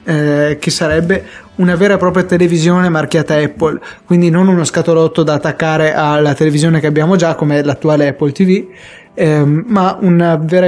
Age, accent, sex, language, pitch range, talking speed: 20-39, native, male, Italian, 150-170 Hz, 165 wpm